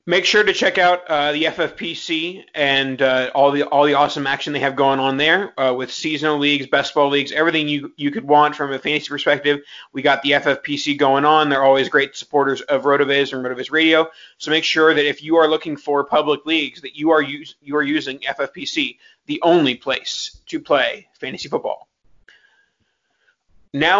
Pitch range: 140-165 Hz